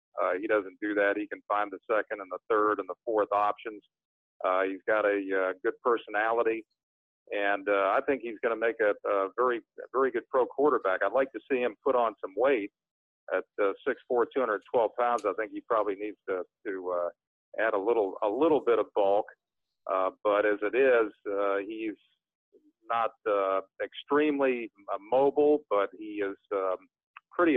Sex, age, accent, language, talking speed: male, 50-69, American, English, 185 wpm